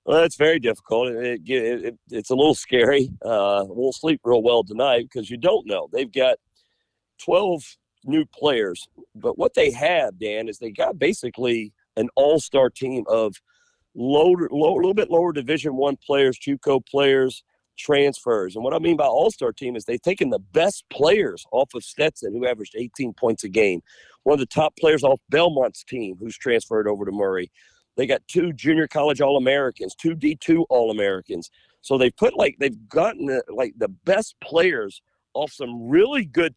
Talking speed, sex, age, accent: 180 wpm, male, 50-69, American